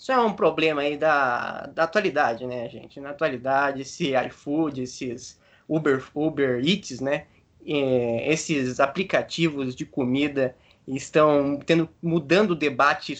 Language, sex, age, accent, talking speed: Portuguese, male, 20-39, Brazilian, 125 wpm